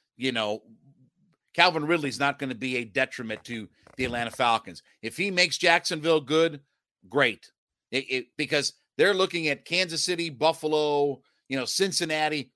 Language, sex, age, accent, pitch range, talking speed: English, male, 50-69, American, 130-170 Hz, 145 wpm